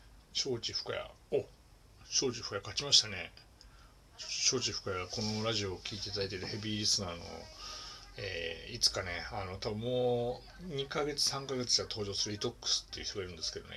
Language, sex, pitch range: Japanese, male, 100-125 Hz